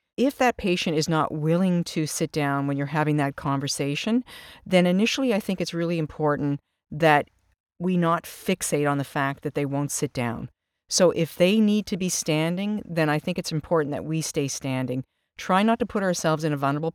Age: 50-69